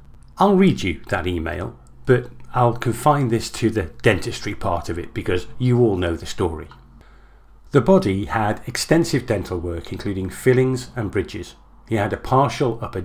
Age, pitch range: 40-59, 95-135 Hz